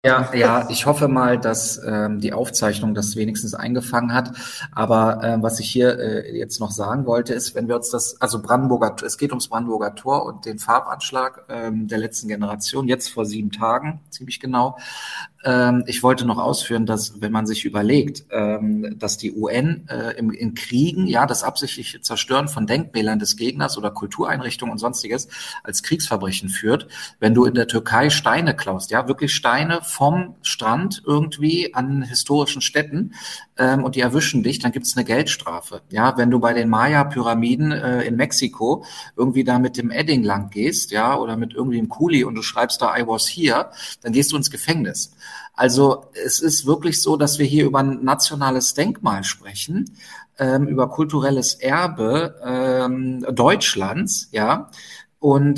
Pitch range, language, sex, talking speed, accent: 115-140 Hz, German, male, 175 wpm, German